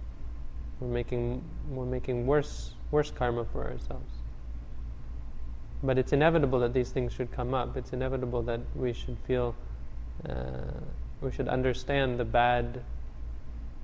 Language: English